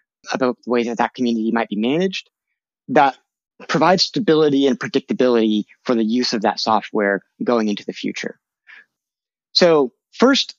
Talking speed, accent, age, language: 145 wpm, American, 30-49, English